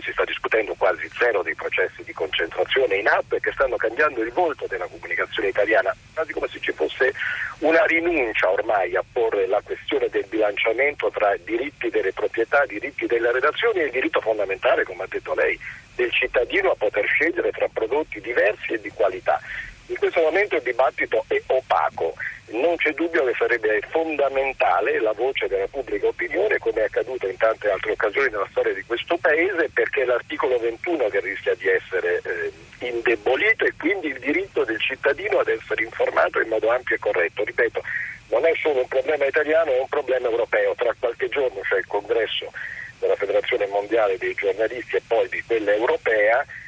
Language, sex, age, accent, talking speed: Italian, male, 50-69, native, 175 wpm